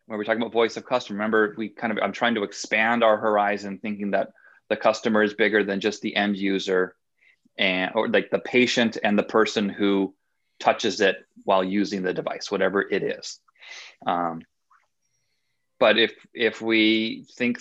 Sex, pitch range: male, 95-115 Hz